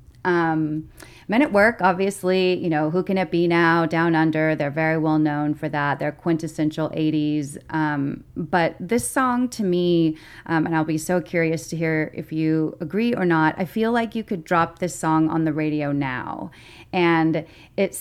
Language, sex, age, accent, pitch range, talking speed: English, female, 30-49, American, 150-175 Hz, 185 wpm